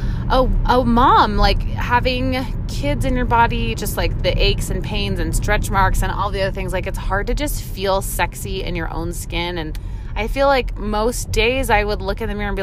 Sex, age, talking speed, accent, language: female, 20-39, 235 wpm, American, English